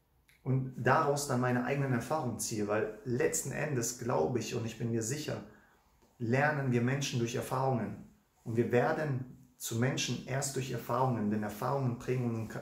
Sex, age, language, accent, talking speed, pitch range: male, 30-49, English, German, 155 wpm, 120-135 Hz